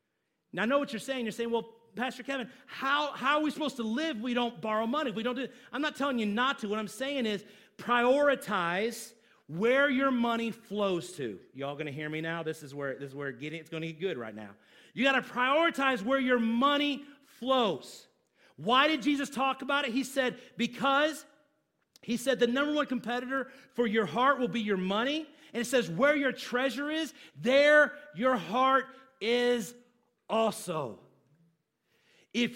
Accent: American